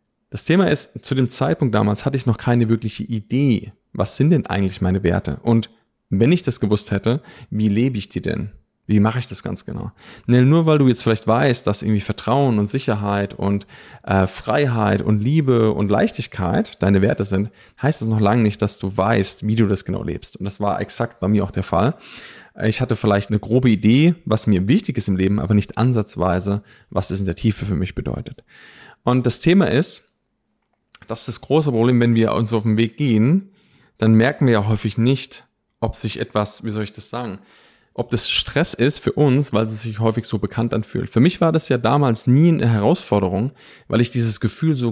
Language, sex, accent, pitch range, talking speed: German, male, German, 105-125 Hz, 210 wpm